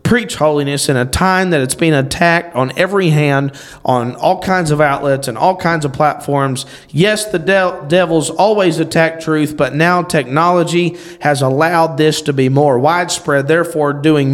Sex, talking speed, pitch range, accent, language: male, 165 wpm, 145-185 Hz, American, English